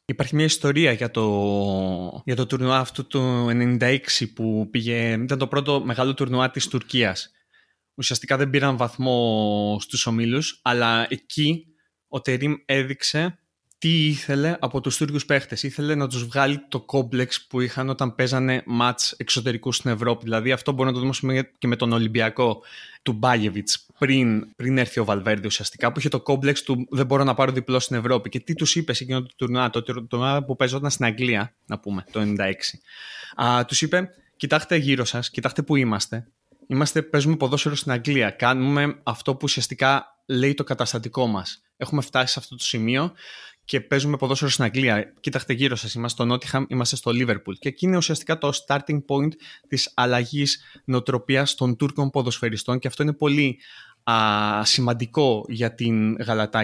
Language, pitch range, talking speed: Greek, 115-140 Hz, 170 wpm